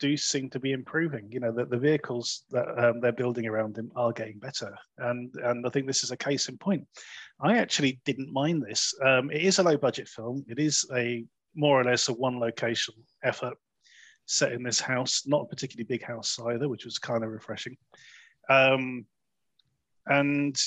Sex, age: male, 30-49